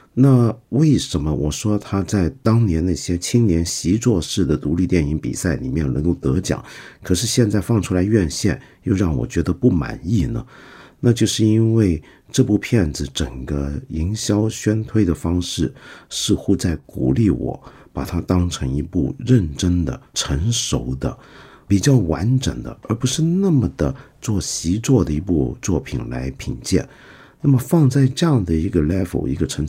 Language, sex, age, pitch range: Chinese, male, 50-69, 70-110 Hz